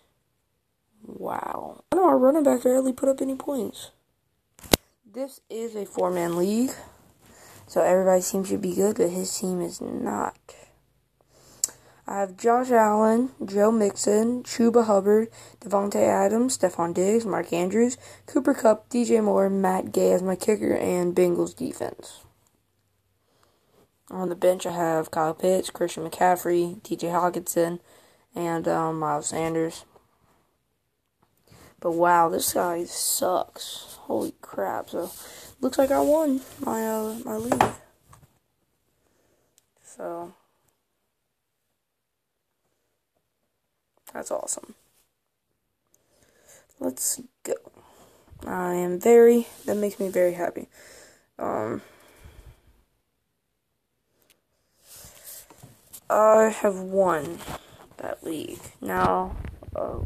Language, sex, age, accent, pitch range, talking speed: English, female, 20-39, American, 170-230 Hz, 105 wpm